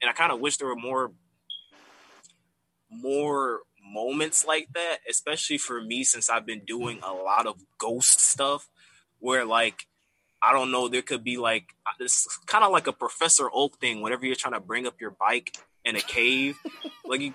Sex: male